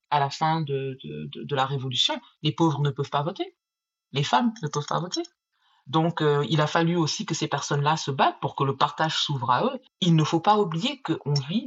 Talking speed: 230 wpm